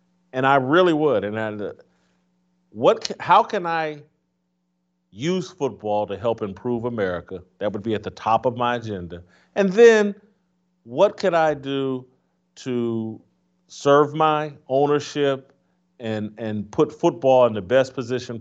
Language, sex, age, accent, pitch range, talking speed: English, male, 40-59, American, 115-155 Hz, 140 wpm